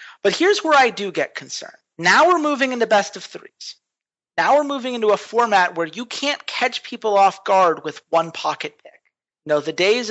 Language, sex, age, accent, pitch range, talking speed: English, male, 40-59, American, 165-240 Hz, 215 wpm